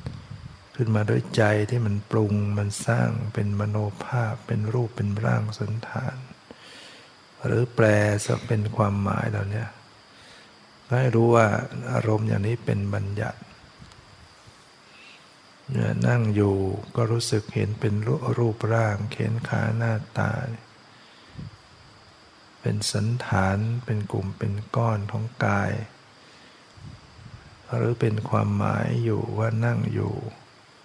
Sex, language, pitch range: male, English, 105-120 Hz